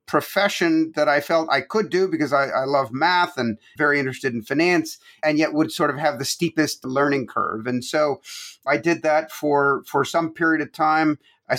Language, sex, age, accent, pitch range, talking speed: English, male, 50-69, American, 140-175 Hz, 200 wpm